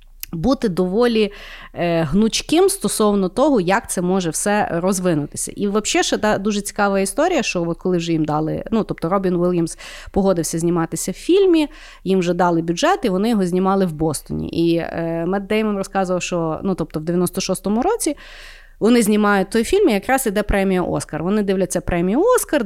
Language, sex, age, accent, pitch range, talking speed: Ukrainian, female, 30-49, native, 170-210 Hz, 175 wpm